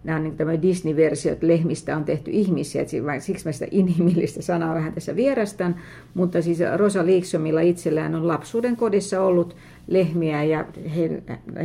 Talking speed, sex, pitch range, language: 130 wpm, female, 155-175 Hz, Finnish